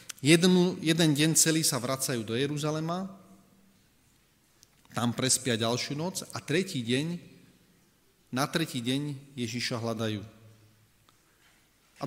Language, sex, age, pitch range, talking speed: Slovak, male, 30-49, 125-155 Hz, 105 wpm